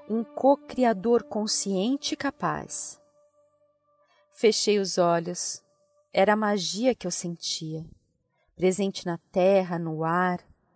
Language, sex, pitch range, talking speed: Portuguese, female, 180-230 Hz, 105 wpm